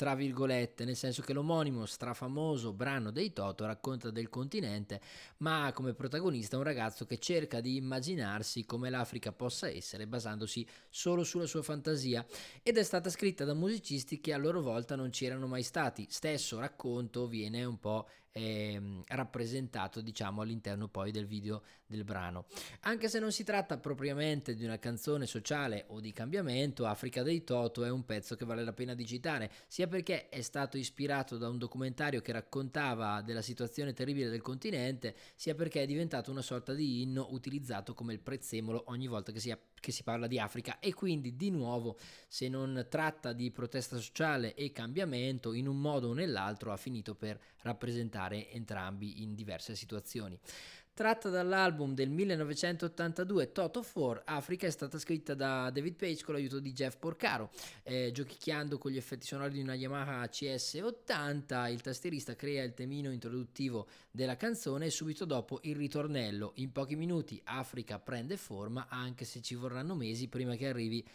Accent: native